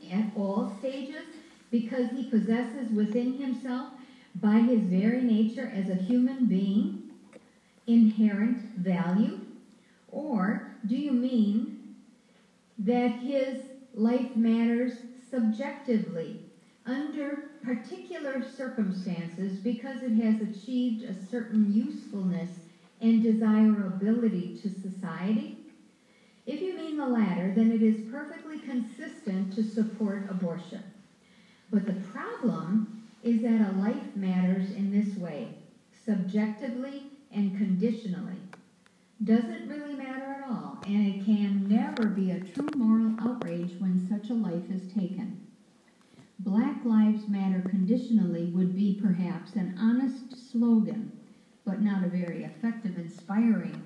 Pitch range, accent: 200-245 Hz, American